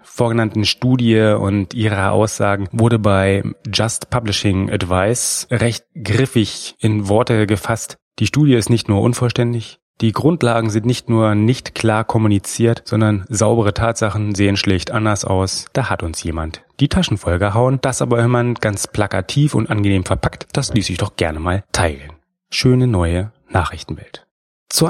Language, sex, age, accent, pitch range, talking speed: German, male, 30-49, German, 100-120 Hz, 150 wpm